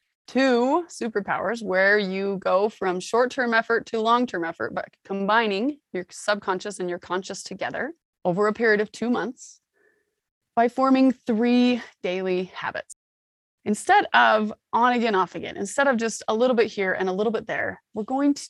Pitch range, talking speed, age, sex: 190-245 Hz, 165 wpm, 20-39, female